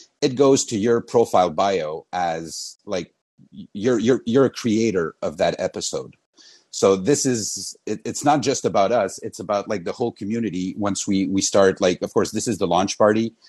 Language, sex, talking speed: English, male, 190 wpm